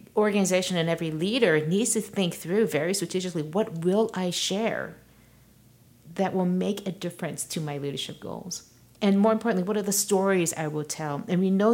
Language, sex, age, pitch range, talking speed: English, female, 50-69, 155-200 Hz, 185 wpm